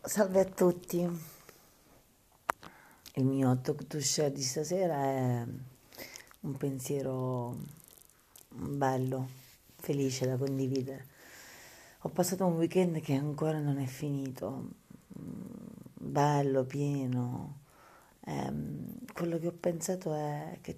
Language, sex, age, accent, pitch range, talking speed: Italian, female, 40-59, native, 125-145 Hz, 100 wpm